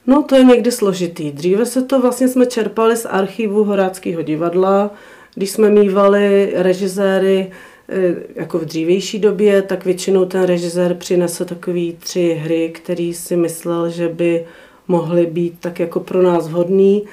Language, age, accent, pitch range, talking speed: Czech, 40-59, native, 175-205 Hz, 150 wpm